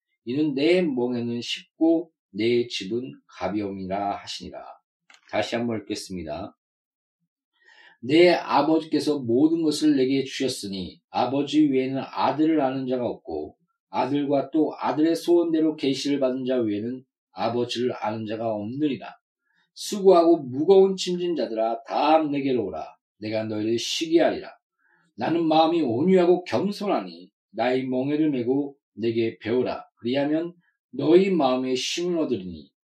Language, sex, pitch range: Korean, male, 115-165 Hz